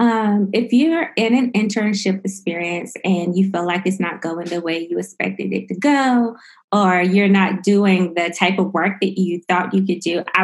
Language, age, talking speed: English, 20-39, 205 wpm